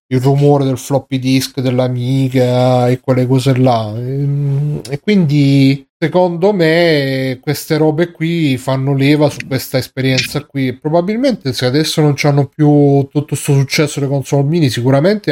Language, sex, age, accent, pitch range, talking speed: Italian, male, 30-49, native, 115-140 Hz, 150 wpm